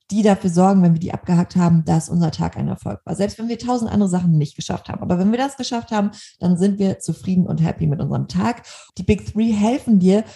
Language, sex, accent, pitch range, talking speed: German, female, German, 175-215 Hz, 250 wpm